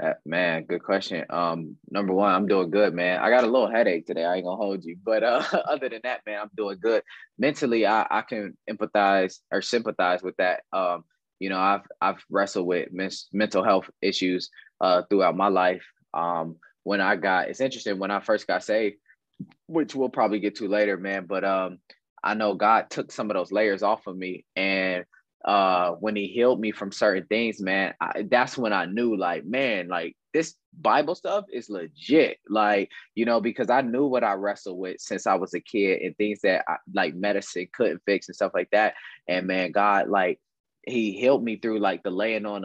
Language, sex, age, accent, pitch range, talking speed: English, male, 20-39, American, 95-115 Hz, 205 wpm